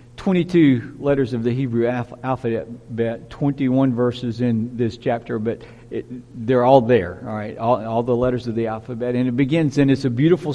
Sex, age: male, 50-69